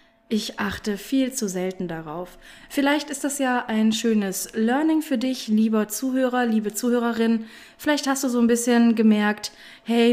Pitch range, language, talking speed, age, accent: 200-250 Hz, German, 160 wpm, 20-39, German